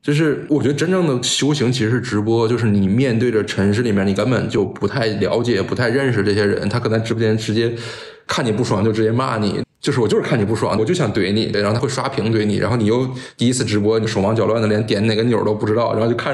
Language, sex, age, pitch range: Chinese, male, 20-39, 105-120 Hz